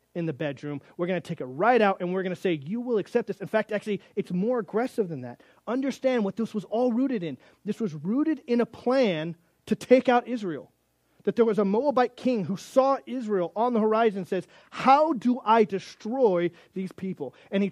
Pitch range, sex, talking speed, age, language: 165-230 Hz, male, 215 wpm, 30-49, English